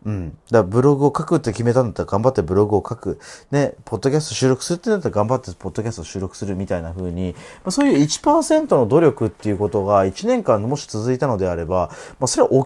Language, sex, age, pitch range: Japanese, male, 30-49, 95-160 Hz